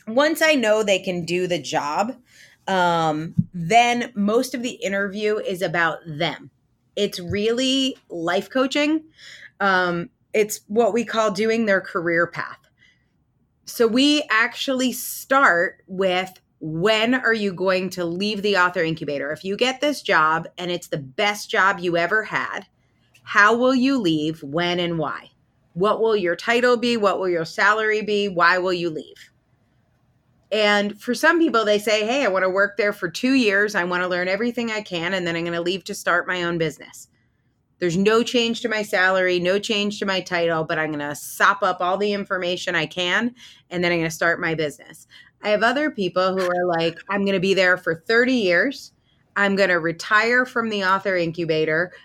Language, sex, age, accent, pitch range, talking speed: English, female, 30-49, American, 170-215 Hz, 190 wpm